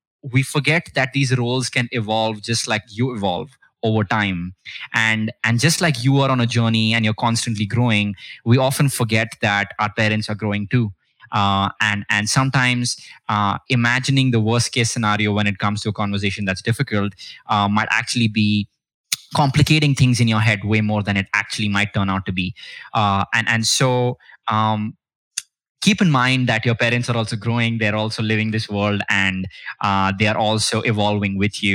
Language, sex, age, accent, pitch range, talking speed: English, male, 20-39, Indian, 105-125 Hz, 185 wpm